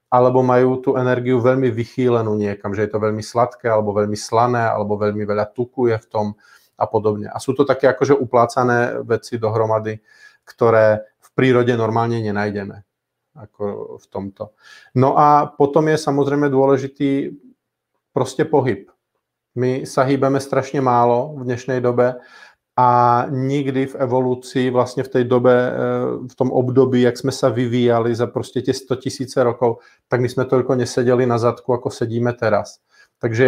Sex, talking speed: male, 160 wpm